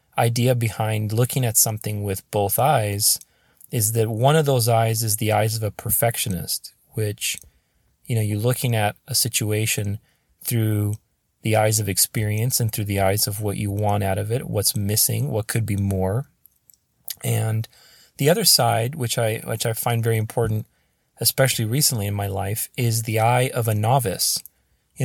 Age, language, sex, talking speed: 30-49, English, male, 175 wpm